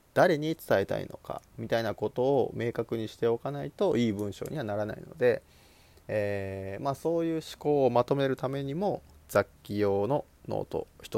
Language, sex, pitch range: Japanese, male, 100-160 Hz